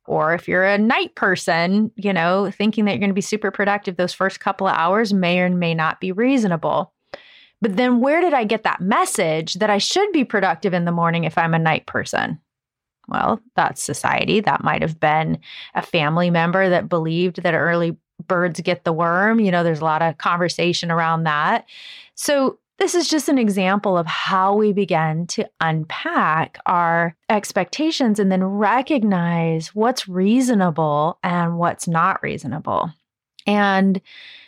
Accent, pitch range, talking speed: American, 170-215 Hz, 170 wpm